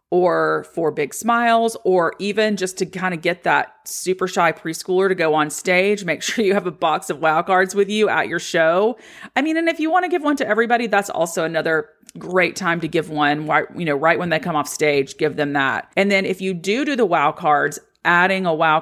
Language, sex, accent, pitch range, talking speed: English, female, American, 160-205 Hz, 240 wpm